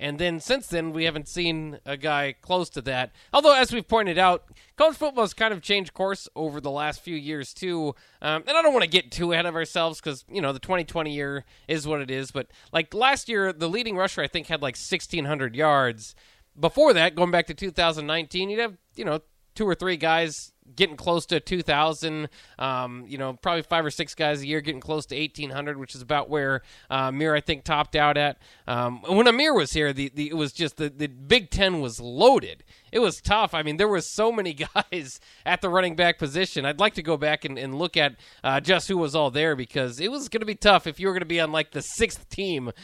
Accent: American